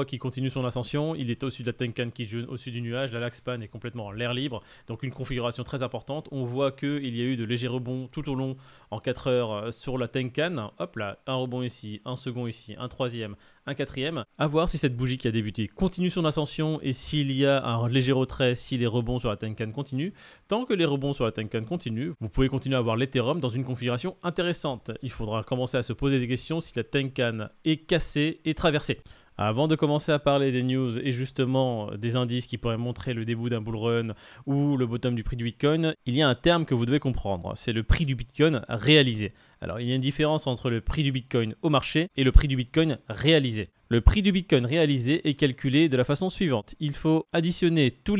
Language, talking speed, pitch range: French, 235 wpm, 120-145 Hz